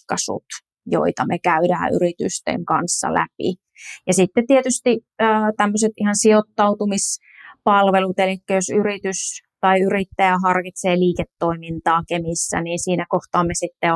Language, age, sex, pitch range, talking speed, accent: Finnish, 30-49, female, 180-215 Hz, 110 wpm, native